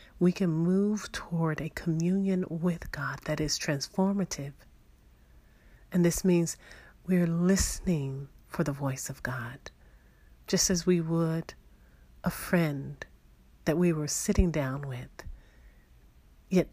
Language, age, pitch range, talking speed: English, 40-59, 120-175 Hz, 120 wpm